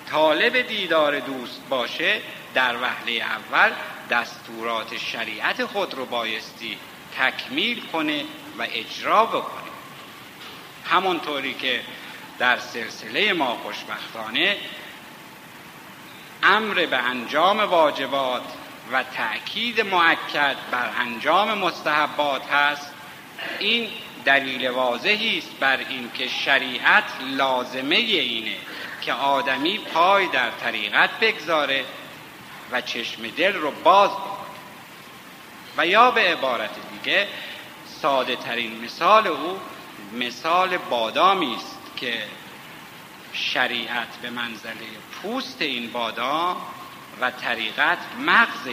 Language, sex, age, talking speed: Persian, male, 60-79, 95 wpm